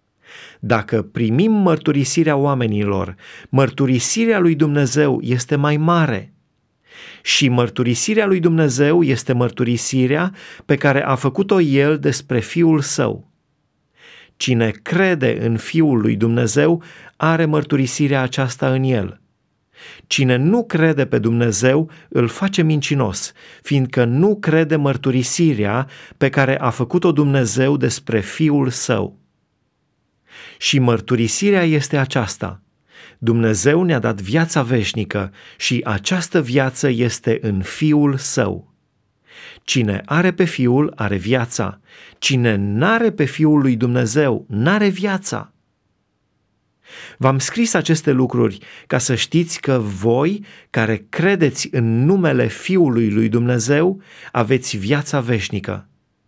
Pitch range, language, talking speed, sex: 120-160 Hz, Romanian, 110 wpm, male